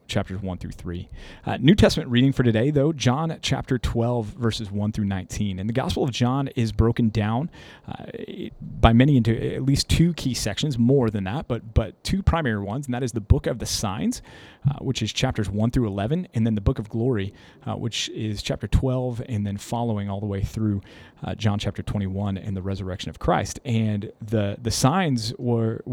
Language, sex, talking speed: English, male, 205 wpm